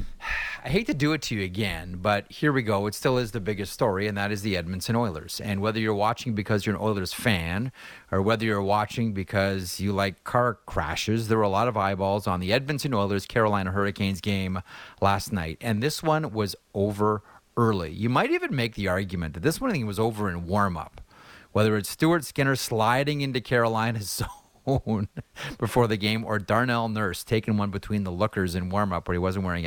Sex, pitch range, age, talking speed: male, 100-115 Hz, 30-49, 200 wpm